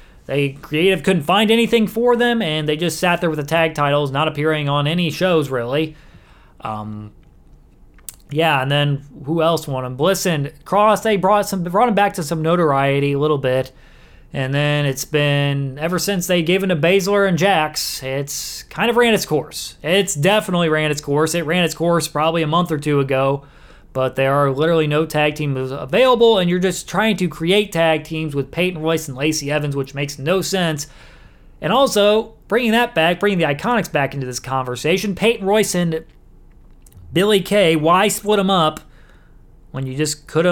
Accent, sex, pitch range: American, male, 145-185 Hz